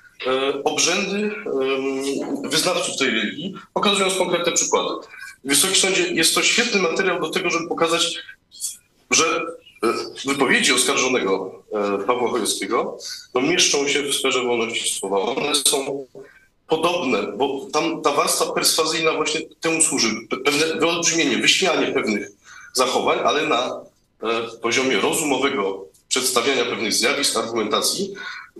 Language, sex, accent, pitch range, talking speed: Polish, male, native, 130-175 Hz, 120 wpm